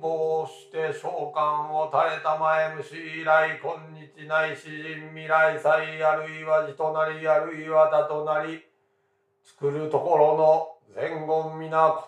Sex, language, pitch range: male, Japanese, 155-160 Hz